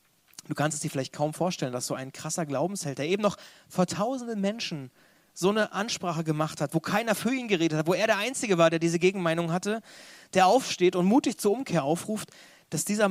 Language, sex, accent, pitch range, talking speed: German, male, German, 155-200 Hz, 215 wpm